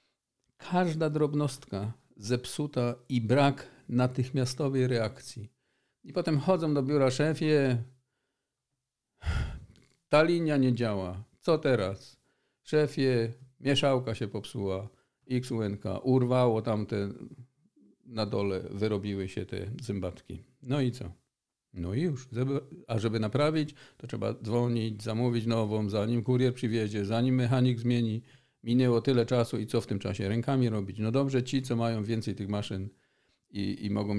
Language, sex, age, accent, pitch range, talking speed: Polish, male, 50-69, native, 105-130 Hz, 130 wpm